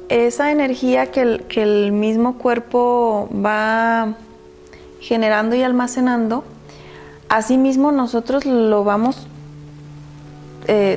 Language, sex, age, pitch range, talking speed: Spanish, female, 30-49, 205-245 Hz, 100 wpm